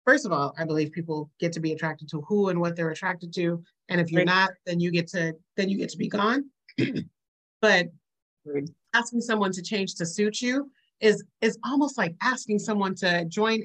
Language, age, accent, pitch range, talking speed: English, 30-49, American, 165-210 Hz, 205 wpm